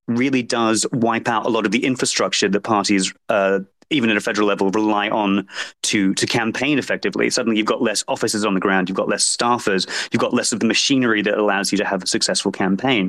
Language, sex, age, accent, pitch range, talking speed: English, male, 30-49, British, 95-115 Hz, 225 wpm